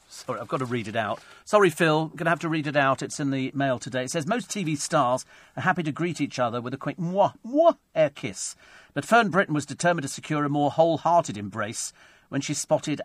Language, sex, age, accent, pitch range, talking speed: English, male, 50-69, British, 120-160 Hz, 255 wpm